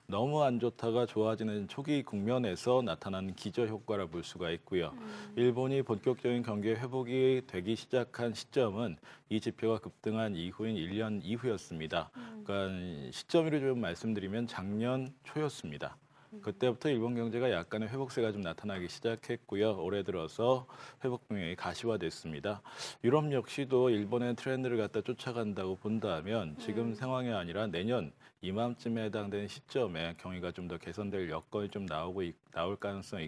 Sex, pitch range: male, 100-125 Hz